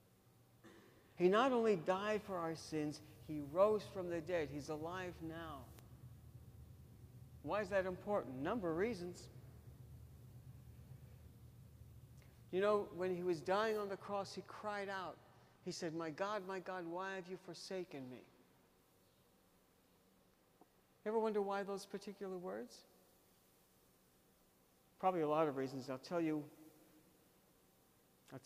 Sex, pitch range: male, 150-205 Hz